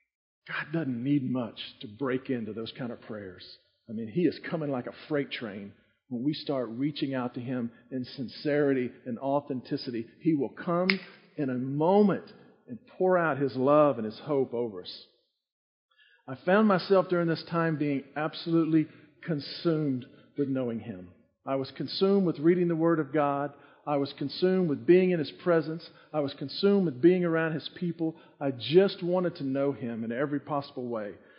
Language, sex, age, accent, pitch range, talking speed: English, male, 50-69, American, 130-170 Hz, 180 wpm